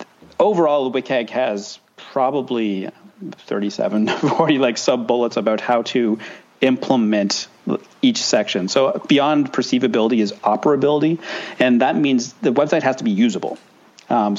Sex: male